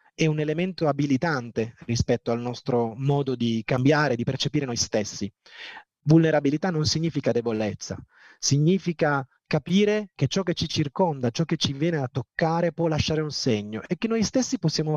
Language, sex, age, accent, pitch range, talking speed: Italian, male, 30-49, native, 130-175 Hz, 160 wpm